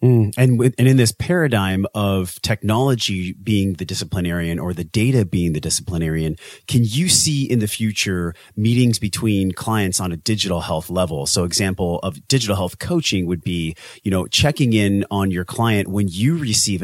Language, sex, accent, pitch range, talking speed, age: English, male, American, 90-115 Hz, 180 wpm, 30-49